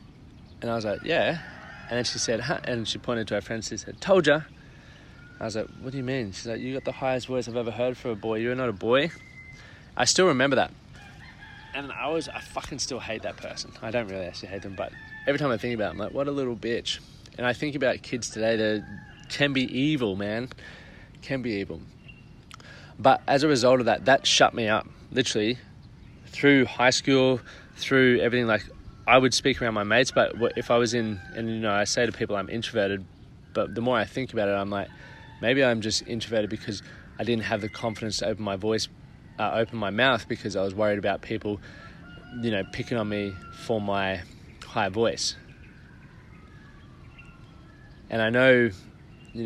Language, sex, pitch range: English, male, 105-125 Hz